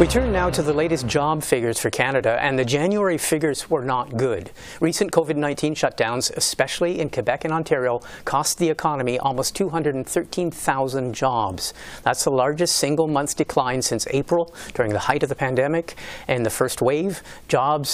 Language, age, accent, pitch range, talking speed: English, 50-69, American, 125-160 Hz, 165 wpm